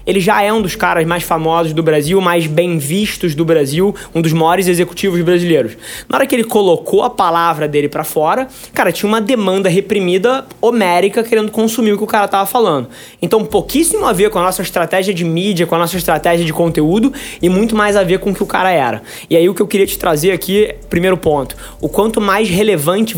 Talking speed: 225 wpm